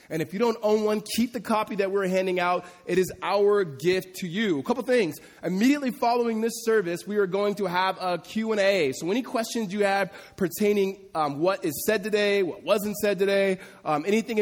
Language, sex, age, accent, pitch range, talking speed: English, male, 20-39, American, 160-205 Hz, 210 wpm